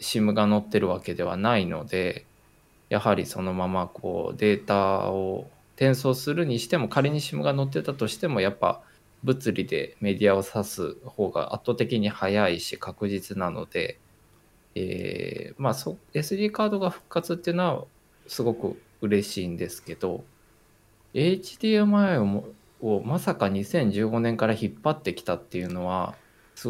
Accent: native